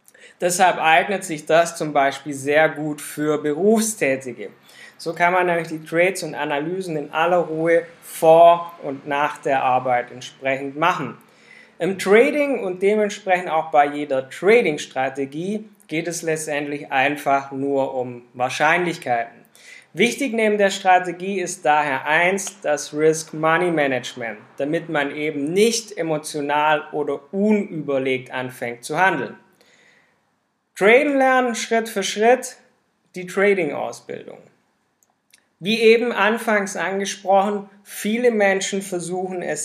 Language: German